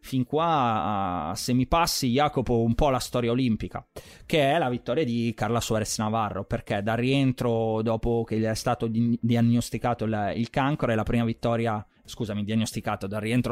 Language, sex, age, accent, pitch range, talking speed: Italian, male, 20-39, native, 115-145 Hz, 170 wpm